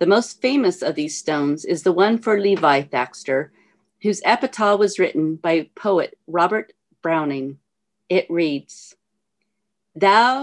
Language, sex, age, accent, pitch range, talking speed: English, female, 40-59, American, 170-230 Hz, 130 wpm